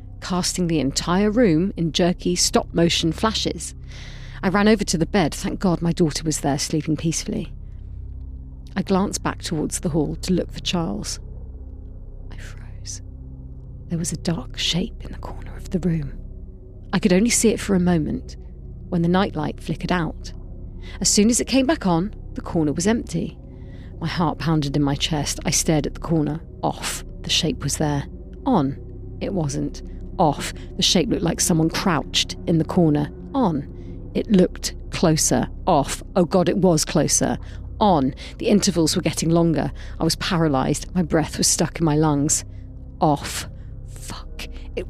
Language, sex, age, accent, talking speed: English, female, 40-59, British, 170 wpm